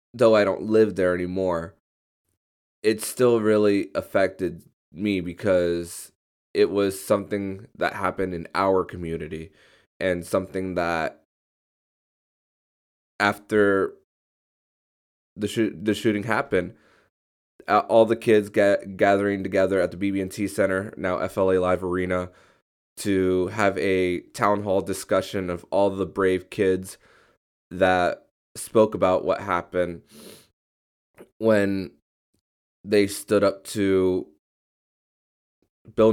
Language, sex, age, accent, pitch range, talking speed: English, male, 20-39, American, 90-105 Hz, 110 wpm